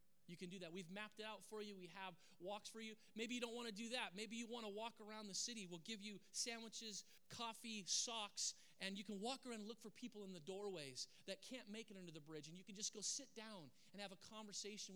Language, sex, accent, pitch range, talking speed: English, male, American, 175-220 Hz, 265 wpm